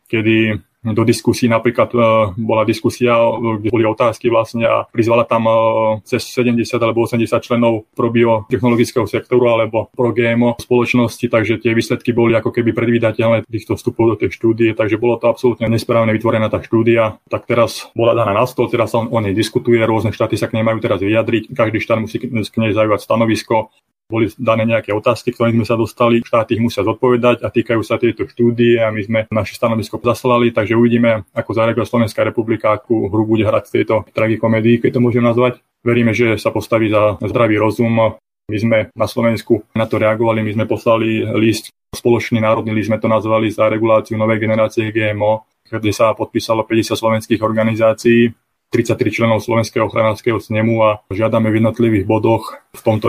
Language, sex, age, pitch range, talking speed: Slovak, male, 20-39, 110-115 Hz, 180 wpm